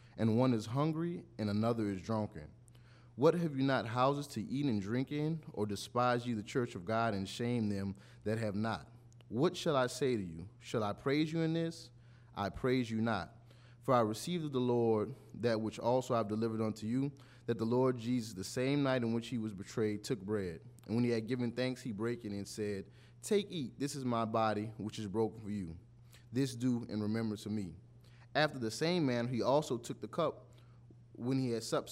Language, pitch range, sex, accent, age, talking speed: English, 110-125 Hz, male, American, 20-39, 220 wpm